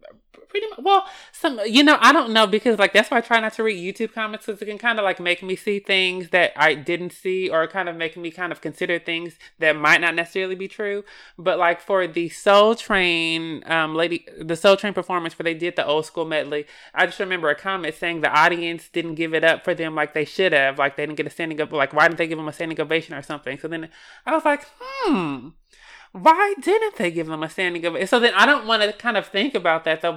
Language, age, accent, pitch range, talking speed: English, 20-39, American, 160-195 Hz, 260 wpm